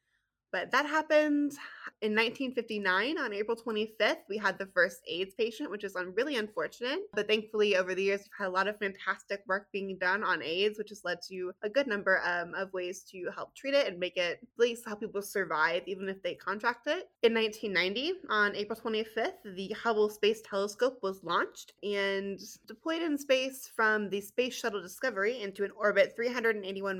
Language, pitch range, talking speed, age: English, 195-240 Hz, 190 wpm, 20-39